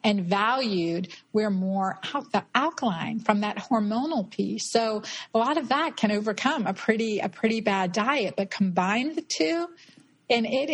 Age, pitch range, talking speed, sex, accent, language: 50-69, 185-220 Hz, 170 wpm, female, American, English